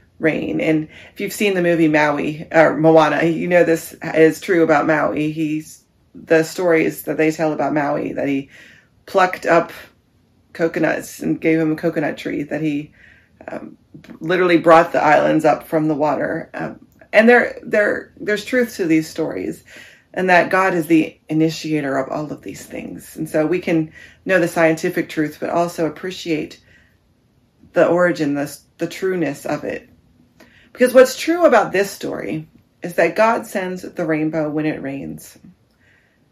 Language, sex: English, female